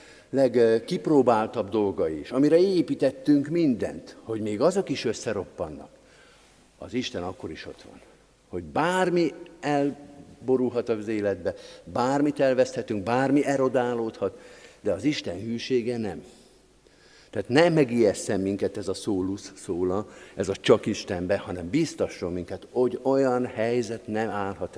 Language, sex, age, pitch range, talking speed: Hungarian, male, 50-69, 95-130 Hz, 125 wpm